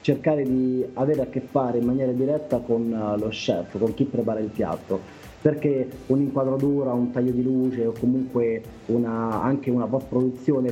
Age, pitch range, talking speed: 30-49, 115-135 Hz, 160 wpm